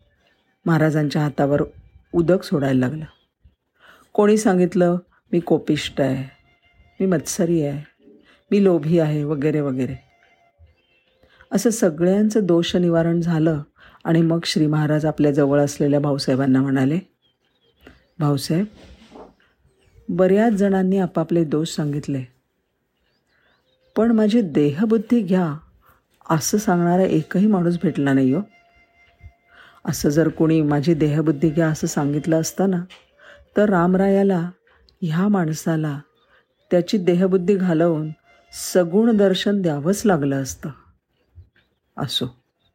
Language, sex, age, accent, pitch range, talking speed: Marathi, female, 50-69, native, 145-190 Hz, 100 wpm